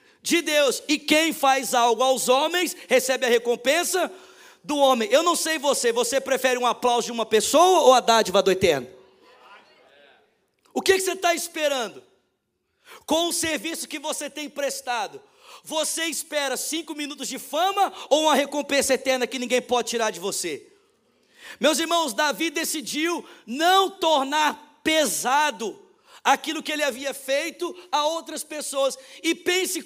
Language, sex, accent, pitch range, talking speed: Portuguese, male, Brazilian, 240-315 Hz, 150 wpm